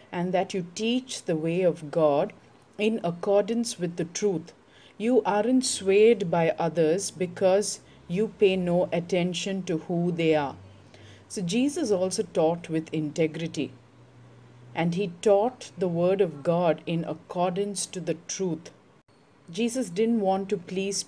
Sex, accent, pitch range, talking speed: female, Indian, 160-195 Hz, 140 wpm